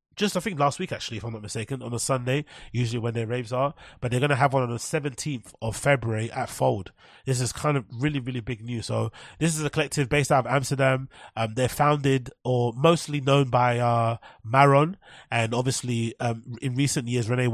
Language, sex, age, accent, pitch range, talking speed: English, male, 30-49, British, 115-135 Hz, 220 wpm